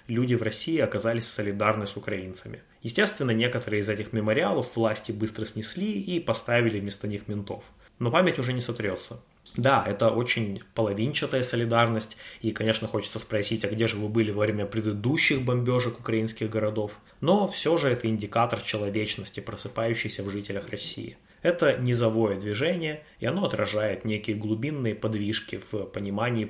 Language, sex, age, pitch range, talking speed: Russian, male, 20-39, 105-125 Hz, 150 wpm